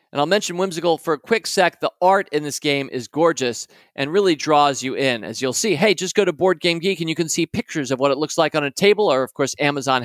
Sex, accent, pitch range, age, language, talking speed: male, American, 145-205 Hz, 40-59, English, 270 wpm